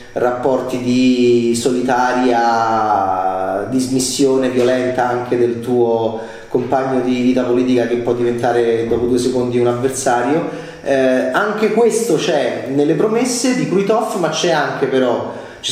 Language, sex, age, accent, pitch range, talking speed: Italian, male, 30-49, native, 125-195 Hz, 125 wpm